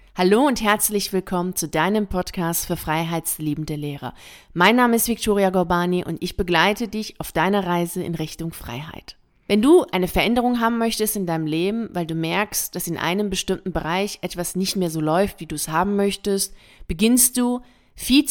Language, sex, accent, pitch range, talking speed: German, female, German, 175-220 Hz, 180 wpm